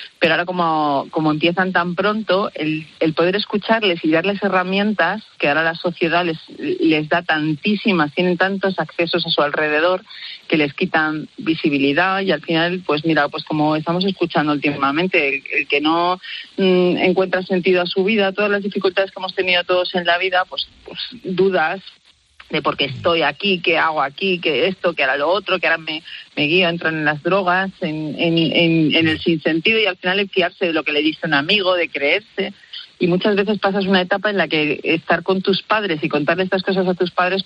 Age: 40-59